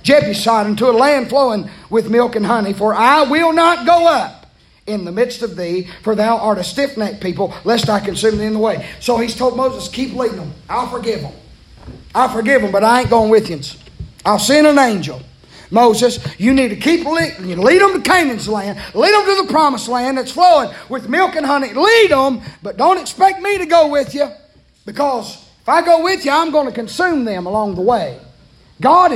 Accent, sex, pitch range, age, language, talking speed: American, male, 215-320 Hz, 30-49, English, 220 wpm